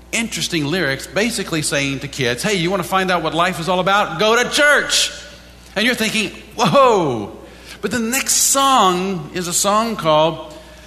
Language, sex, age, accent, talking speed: English, male, 50-69, American, 175 wpm